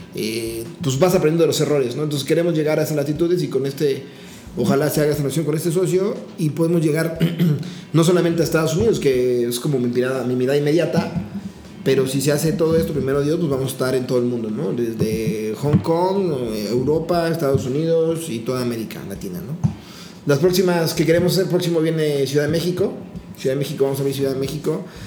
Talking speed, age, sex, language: 215 wpm, 30-49, male, Spanish